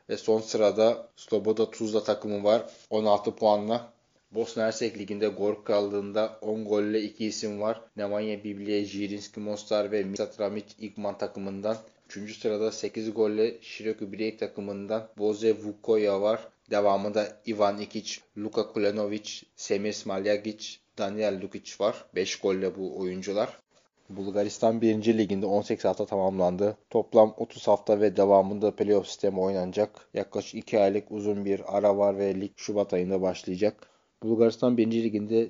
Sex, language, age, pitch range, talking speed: male, Turkish, 20-39, 100-110 Hz, 135 wpm